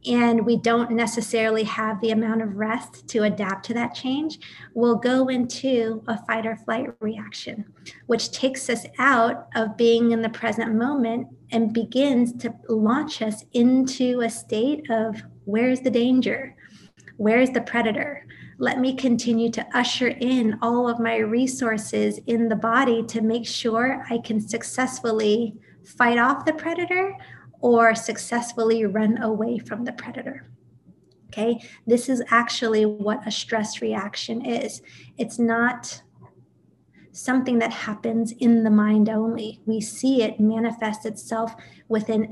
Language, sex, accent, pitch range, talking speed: English, female, American, 220-240 Hz, 145 wpm